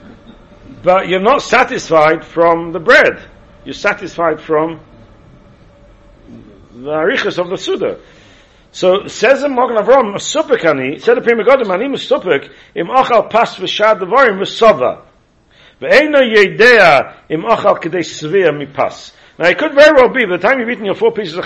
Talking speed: 100 wpm